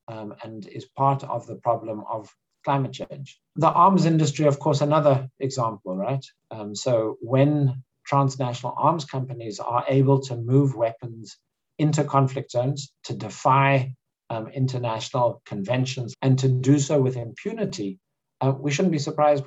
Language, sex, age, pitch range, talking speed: English, male, 50-69, 120-145 Hz, 150 wpm